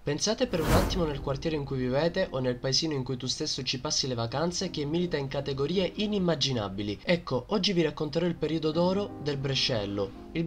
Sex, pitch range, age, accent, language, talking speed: male, 135-170 Hz, 20-39, native, Italian, 200 wpm